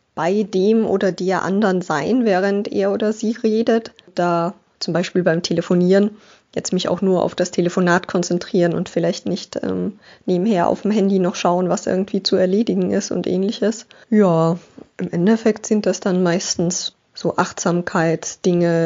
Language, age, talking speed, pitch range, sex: German, 20-39, 160 wpm, 175-200 Hz, female